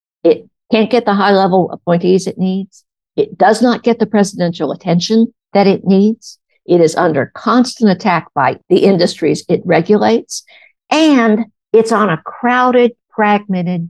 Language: English